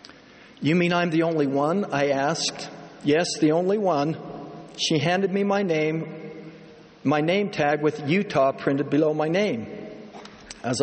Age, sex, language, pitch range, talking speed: 60-79, male, English, 145-175 Hz, 150 wpm